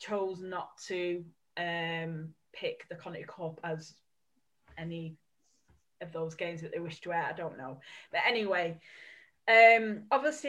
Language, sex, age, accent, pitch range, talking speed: English, female, 10-29, British, 170-255 Hz, 145 wpm